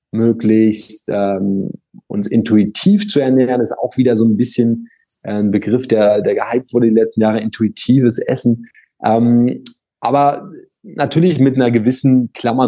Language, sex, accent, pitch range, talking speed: German, male, German, 115-140 Hz, 150 wpm